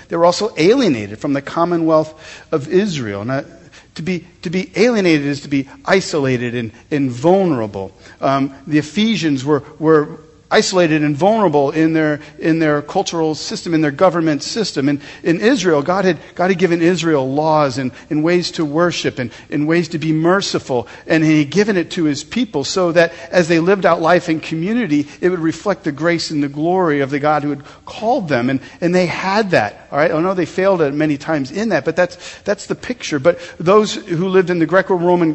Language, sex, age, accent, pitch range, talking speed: English, male, 50-69, American, 145-180 Hz, 205 wpm